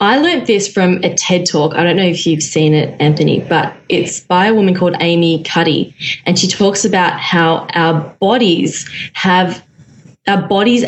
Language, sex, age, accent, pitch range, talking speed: English, female, 20-39, Australian, 165-205 Hz, 180 wpm